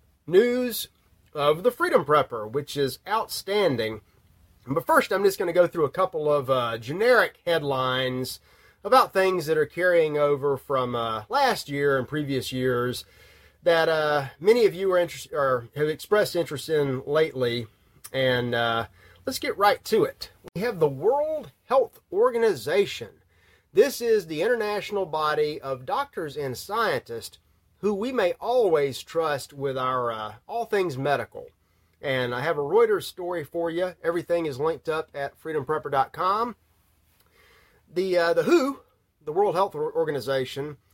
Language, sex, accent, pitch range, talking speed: English, male, American, 135-210 Hz, 150 wpm